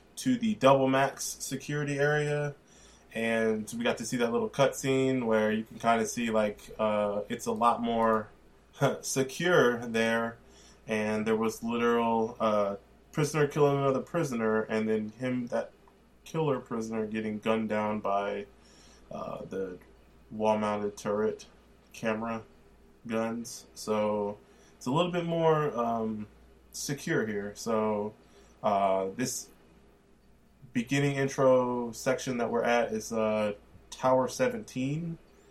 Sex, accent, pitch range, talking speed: male, American, 105-125 Hz, 130 wpm